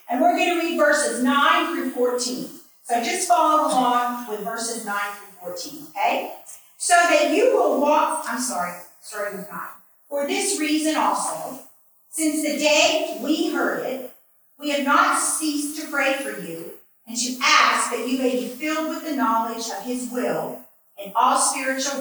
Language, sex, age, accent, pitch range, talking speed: English, female, 40-59, American, 245-325 Hz, 175 wpm